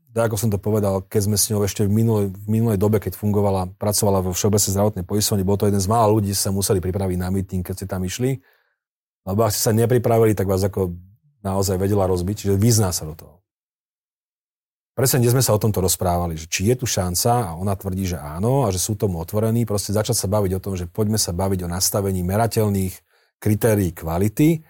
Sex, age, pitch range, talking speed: male, 40-59, 95-120 Hz, 220 wpm